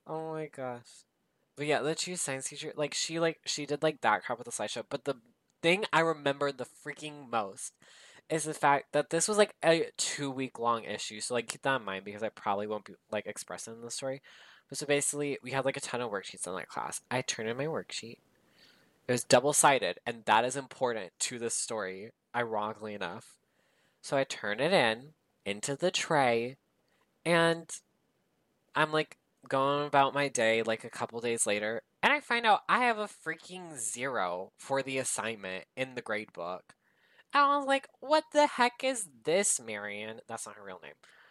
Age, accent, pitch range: 20-39, American, 110-155 Hz